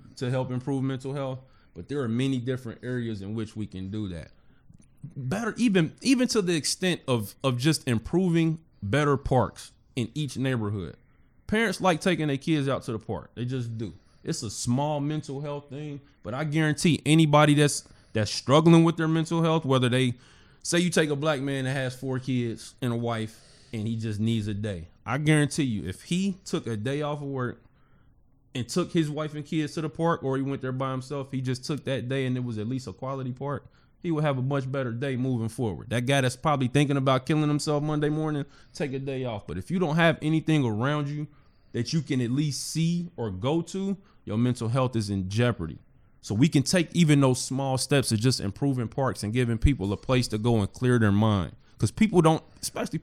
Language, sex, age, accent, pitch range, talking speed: English, male, 20-39, American, 120-155 Hz, 220 wpm